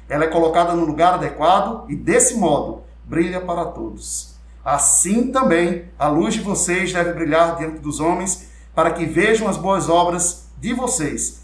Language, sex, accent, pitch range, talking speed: Portuguese, male, Brazilian, 145-180 Hz, 165 wpm